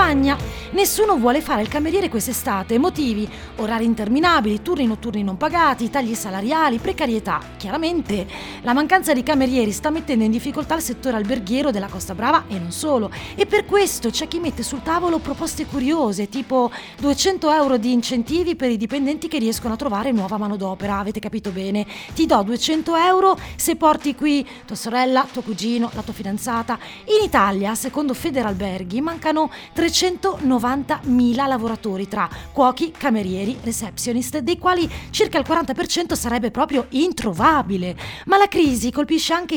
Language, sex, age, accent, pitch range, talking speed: Italian, female, 30-49, native, 220-305 Hz, 150 wpm